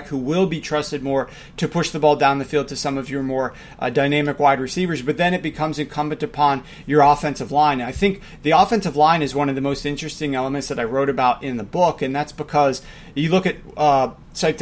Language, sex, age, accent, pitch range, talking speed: English, male, 40-59, American, 145-170 Hz, 225 wpm